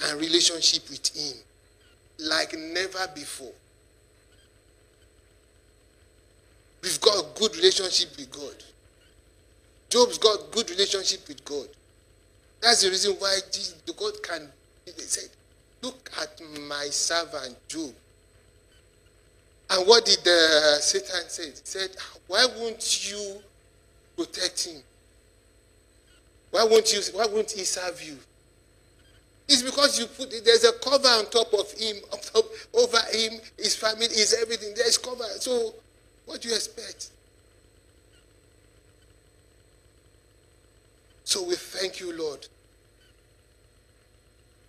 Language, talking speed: English, 115 wpm